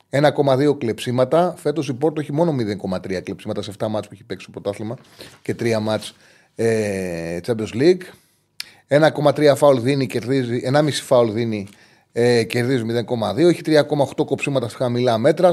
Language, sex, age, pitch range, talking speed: Greek, male, 30-49, 110-150 Hz, 145 wpm